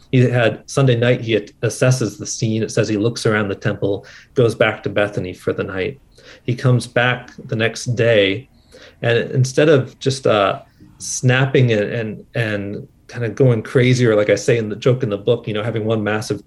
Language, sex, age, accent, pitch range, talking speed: English, male, 40-59, American, 105-135 Hz, 205 wpm